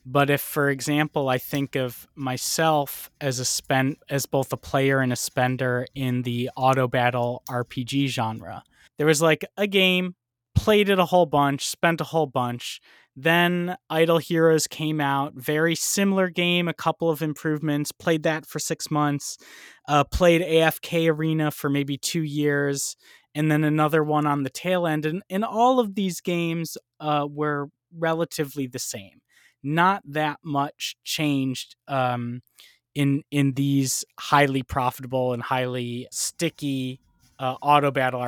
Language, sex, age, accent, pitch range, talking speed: English, male, 20-39, American, 135-165 Hz, 155 wpm